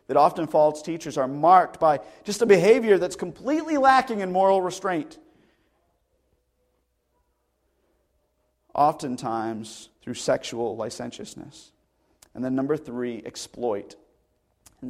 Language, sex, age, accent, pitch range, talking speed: English, male, 40-59, American, 175-245 Hz, 105 wpm